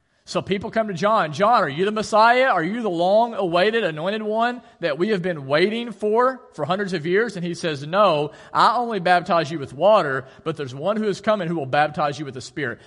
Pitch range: 140-195 Hz